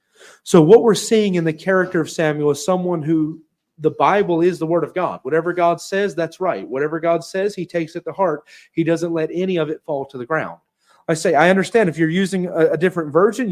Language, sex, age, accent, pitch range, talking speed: English, male, 30-49, American, 155-195 Hz, 235 wpm